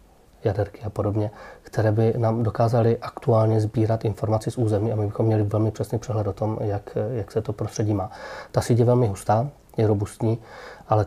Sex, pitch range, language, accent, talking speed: male, 105-115 Hz, Czech, native, 190 wpm